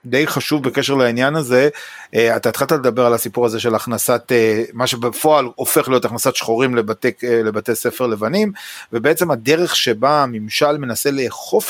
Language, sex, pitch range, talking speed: Hebrew, male, 120-165 Hz, 150 wpm